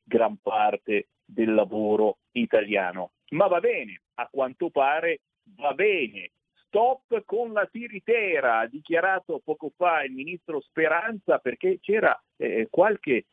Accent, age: native, 50-69